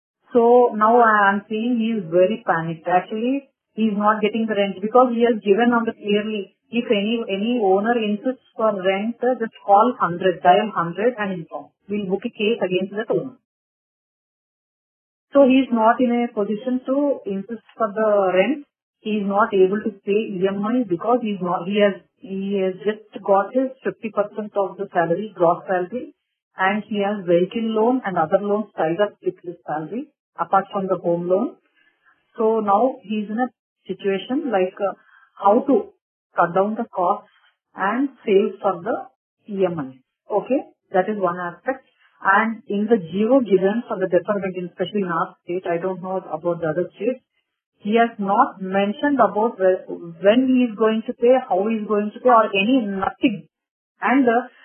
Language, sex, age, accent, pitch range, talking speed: English, female, 30-49, Indian, 190-235 Hz, 185 wpm